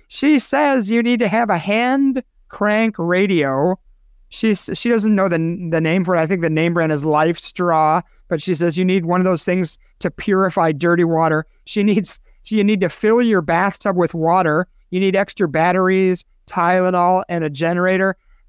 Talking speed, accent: 190 wpm, American